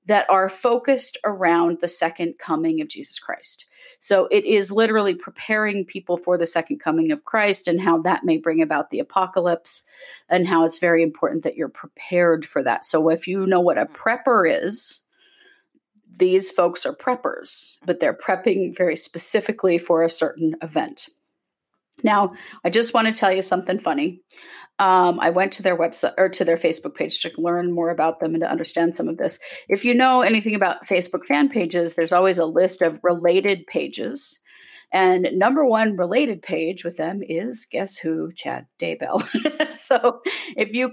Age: 30-49